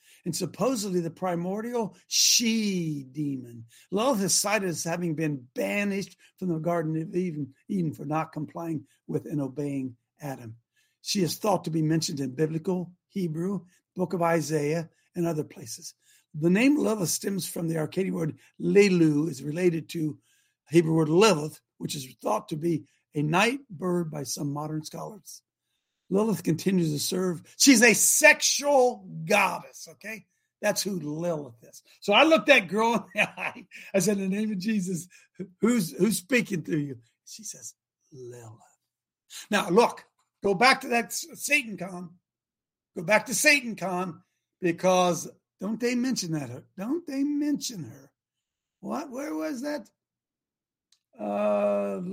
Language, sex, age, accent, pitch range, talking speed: English, male, 60-79, American, 155-210 Hz, 150 wpm